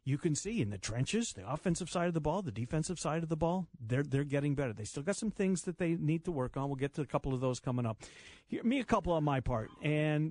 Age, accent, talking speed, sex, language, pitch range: 50-69, American, 290 wpm, male, English, 130-175 Hz